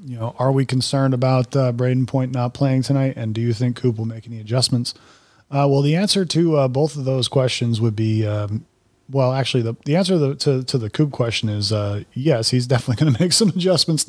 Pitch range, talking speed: 110-140 Hz, 240 wpm